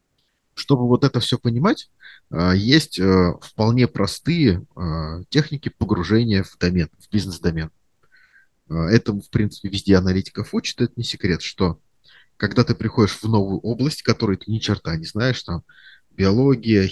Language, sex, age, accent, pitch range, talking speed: Russian, male, 30-49, native, 95-120 Hz, 135 wpm